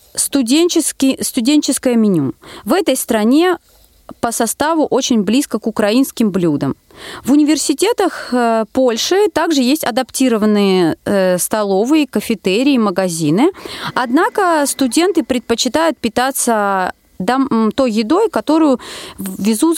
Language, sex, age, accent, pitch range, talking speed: Russian, female, 30-49, native, 220-310 Hz, 95 wpm